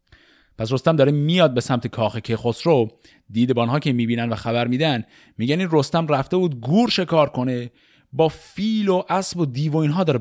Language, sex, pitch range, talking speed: Persian, male, 95-135 Hz, 190 wpm